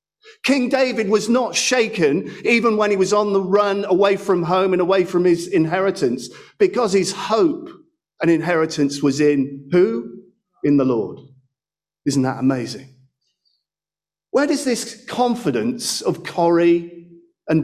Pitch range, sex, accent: 160-225 Hz, male, British